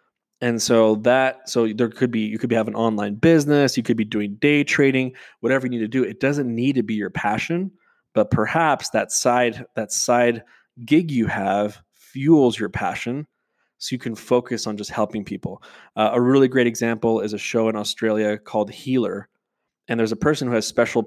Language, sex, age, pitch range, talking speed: English, male, 20-39, 110-125 Hz, 200 wpm